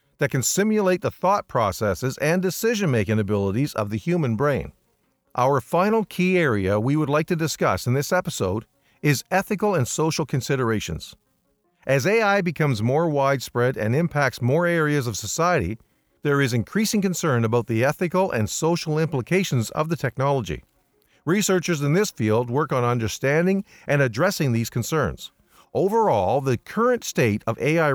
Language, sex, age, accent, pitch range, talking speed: English, male, 50-69, American, 120-175 Hz, 150 wpm